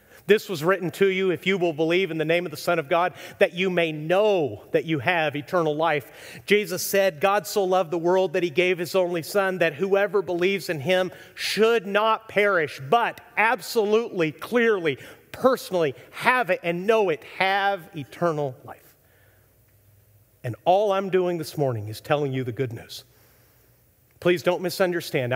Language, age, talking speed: English, 40-59, 175 wpm